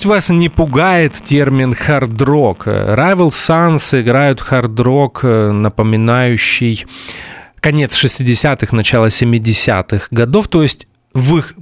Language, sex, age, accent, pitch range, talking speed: Russian, male, 30-49, native, 110-150 Hz, 100 wpm